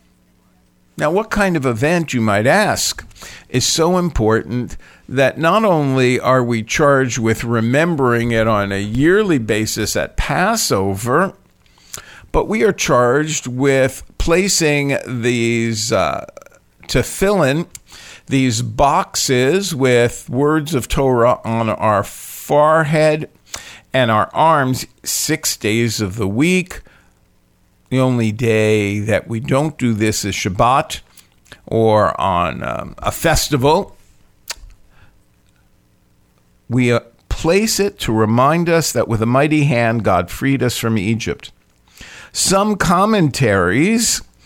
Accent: American